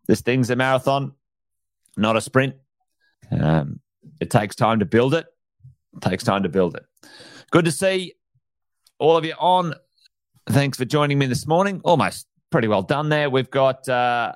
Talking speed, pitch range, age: 165 wpm, 105-140 Hz, 30-49